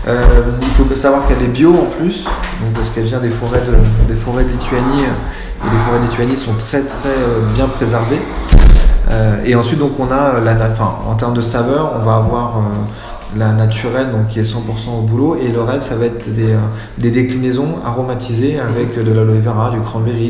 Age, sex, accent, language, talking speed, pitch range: 20-39, male, French, French, 195 wpm, 110-130 Hz